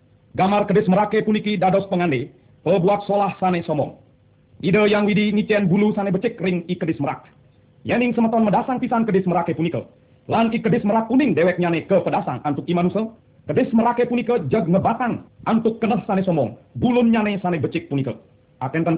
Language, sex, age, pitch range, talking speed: Indonesian, male, 40-59, 160-215 Hz, 170 wpm